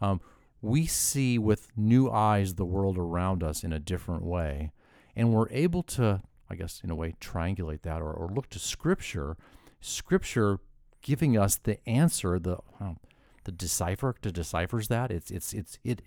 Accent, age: American, 50-69